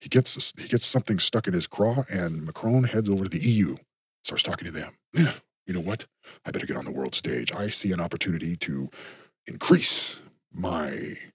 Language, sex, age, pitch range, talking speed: English, male, 50-69, 85-120 Hz, 200 wpm